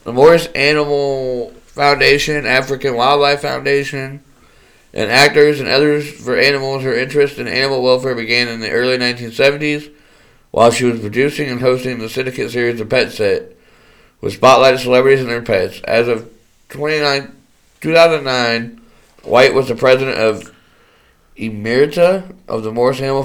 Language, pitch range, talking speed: English, 115-140 Hz, 140 wpm